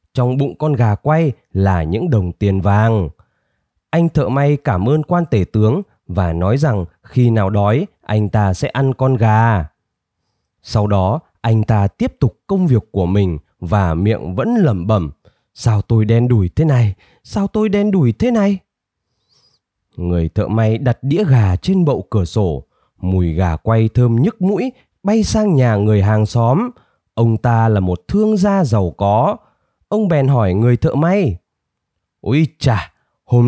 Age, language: 20-39, Vietnamese